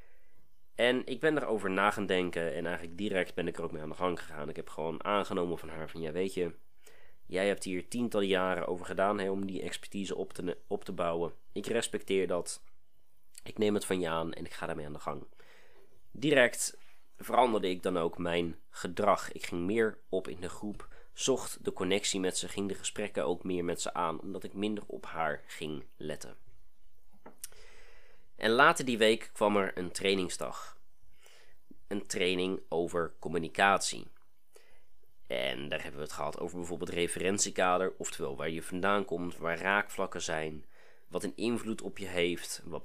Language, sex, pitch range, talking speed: Dutch, male, 85-105 Hz, 180 wpm